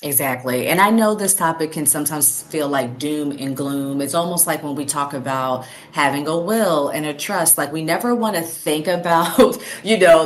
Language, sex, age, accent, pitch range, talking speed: English, female, 30-49, American, 135-170 Hz, 205 wpm